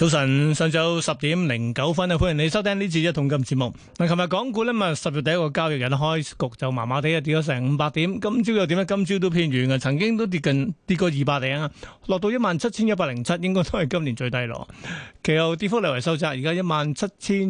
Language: Chinese